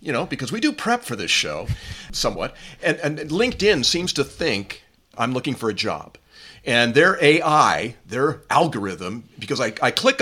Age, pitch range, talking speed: 50-69, 115-180 Hz, 175 wpm